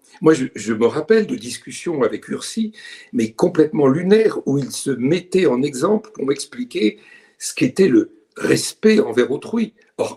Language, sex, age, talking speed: French, male, 60-79, 160 wpm